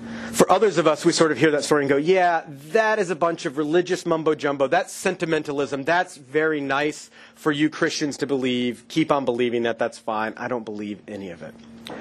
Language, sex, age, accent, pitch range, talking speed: English, male, 30-49, American, 145-185 Hz, 210 wpm